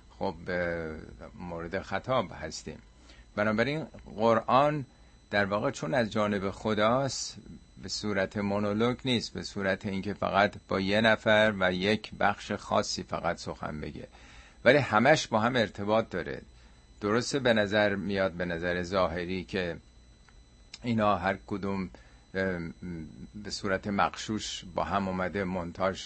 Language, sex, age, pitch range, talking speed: Persian, male, 50-69, 90-110 Hz, 125 wpm